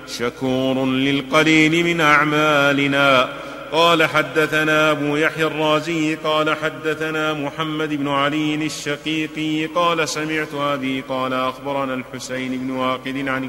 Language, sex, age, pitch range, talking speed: Arabic, male, 30-49, 140-155 Hz, 105 wpm